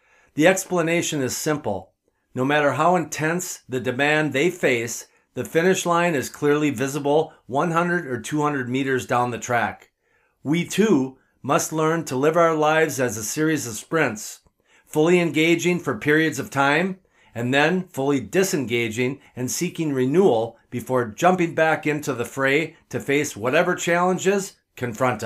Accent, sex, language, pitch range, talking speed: American, male, English, 125-160 Hz, 145 wpm